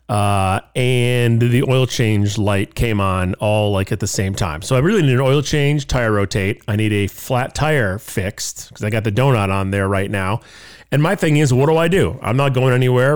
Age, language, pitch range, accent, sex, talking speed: 40-59, English, 105-145 Hz, American, male, 230 wpm